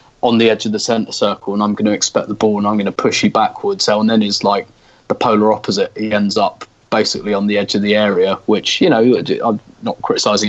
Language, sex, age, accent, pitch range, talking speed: English, male, 20-39, British, 105-120 Hz, 255 wpm